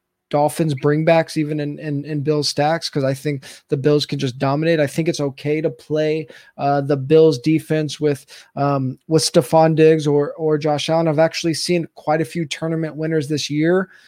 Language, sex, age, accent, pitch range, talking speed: English, male, 20-39, American, 150-175 Hz, 195 wpm